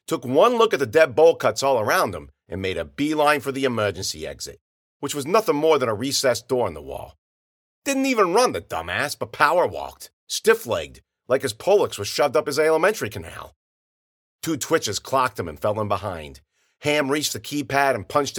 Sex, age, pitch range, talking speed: male, 50-69, 100-155 Hz, 200 wpm